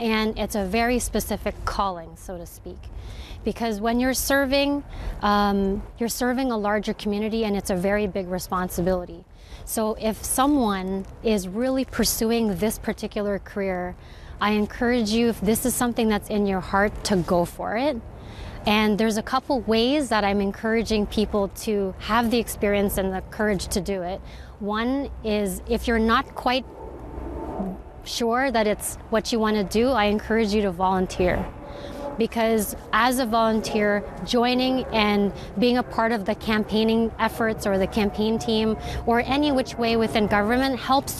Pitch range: 200-230 Hz